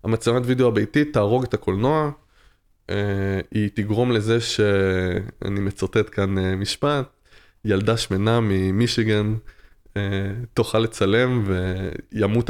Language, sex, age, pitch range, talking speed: Hebrew, male, 20-39, 100-115 Hz, 90 wpm